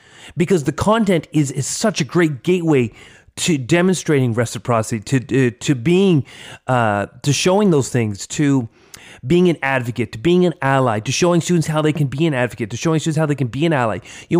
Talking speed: 200 wpm